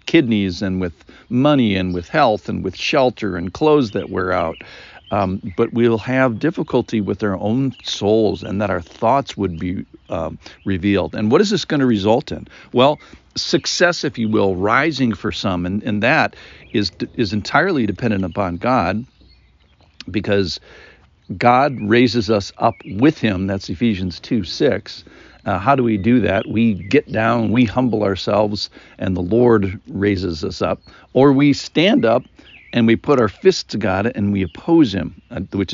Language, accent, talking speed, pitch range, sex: English, American, 170 wpm, 95-120 Hz, male